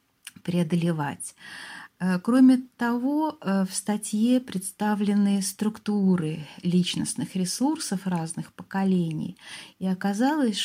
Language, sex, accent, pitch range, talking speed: Russian, female, native, 175-215 Hz, 75 wpm